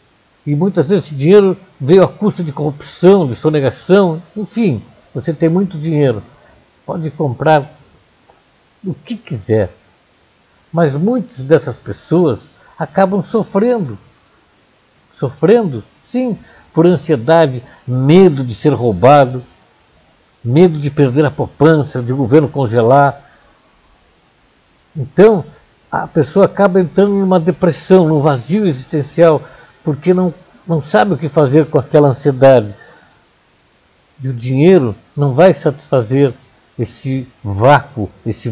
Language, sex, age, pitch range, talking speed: Portuguese, male, 60-79, 130-170 Hz, 115 wpm